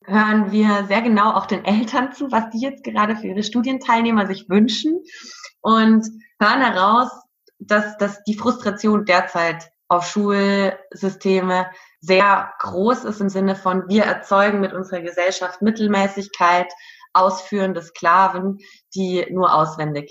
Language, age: German, 20-39